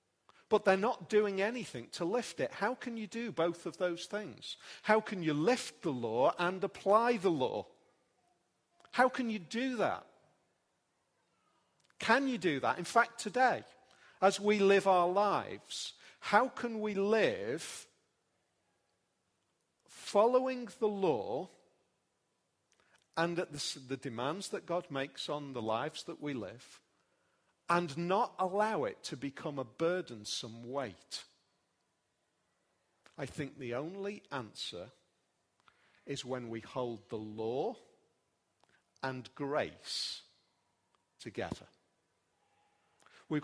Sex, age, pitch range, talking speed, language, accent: male, 40-59, 140-210 Hz, 120 wpm, English, British